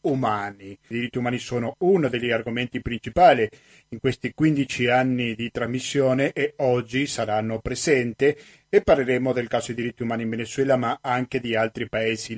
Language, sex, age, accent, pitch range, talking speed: Italian, male, 40-59, native, 125-155 Hz, 155 wpm